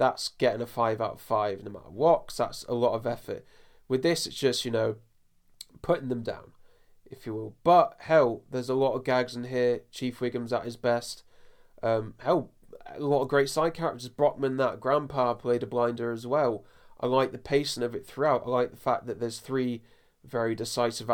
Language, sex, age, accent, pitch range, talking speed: English, male, 20-39, British, 115-130 Hz, 205 wpm